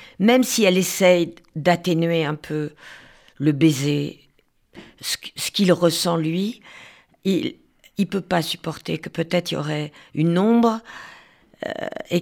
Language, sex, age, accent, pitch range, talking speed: French, female, 50-69, French, 170-220 Hz, 130 wpm